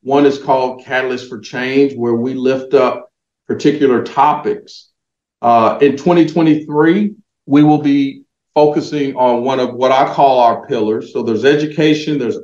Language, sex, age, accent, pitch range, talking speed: English, male, 50-69, American, 120-155 Hz, 150 wpm